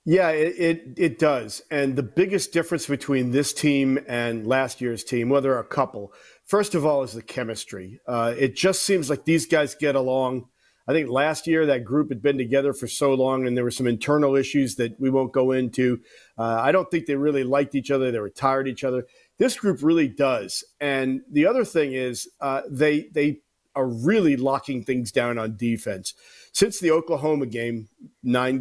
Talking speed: 205 wpm